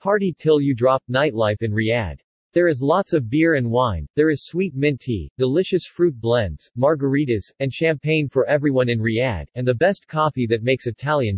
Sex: male